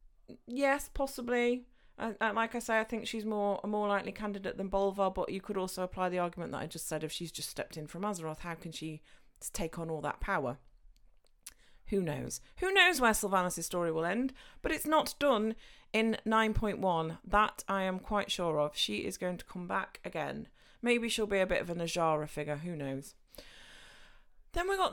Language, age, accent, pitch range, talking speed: English, 30-49, British, 175-250 Hz, 205 wpm